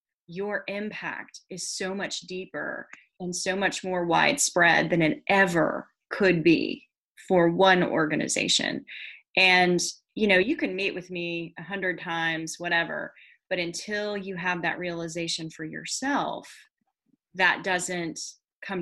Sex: female